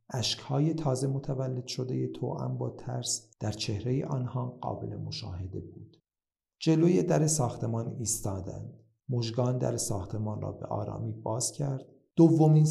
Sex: male